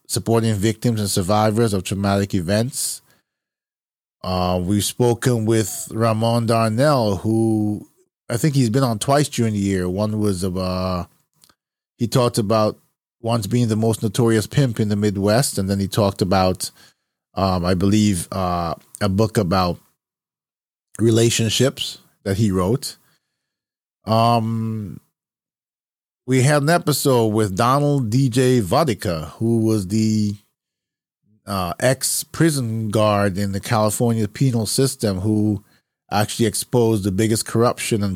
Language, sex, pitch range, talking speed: English, male, 100-120 Hz, 130 wpm